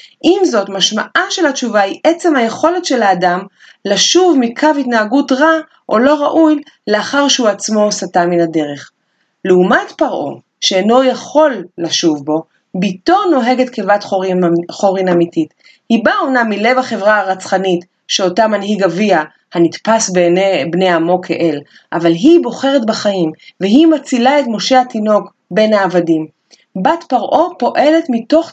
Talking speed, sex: 135 wpm, female